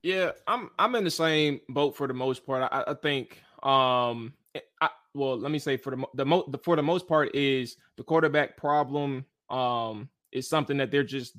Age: 20-39